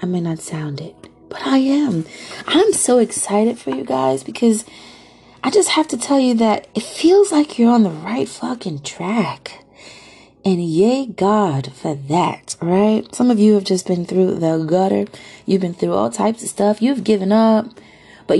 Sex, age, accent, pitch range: female, 30-49, American, 185-235 Hz